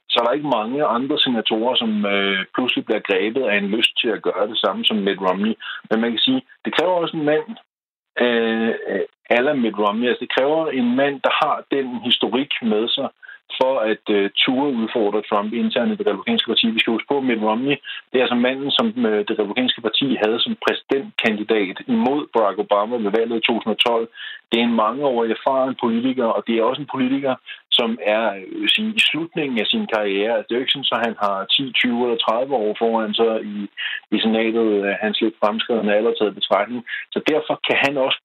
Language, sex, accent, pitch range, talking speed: Danish, male, native, 110-145 Hz, 215 wpm